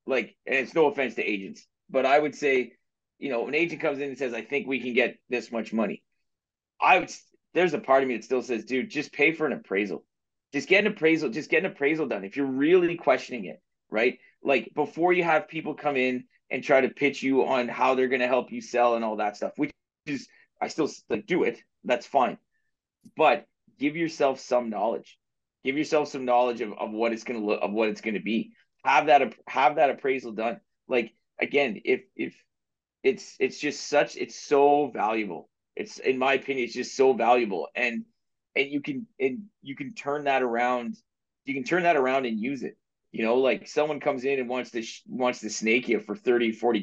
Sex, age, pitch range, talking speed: male, 30-49, 120-155 Hz, 220 wpm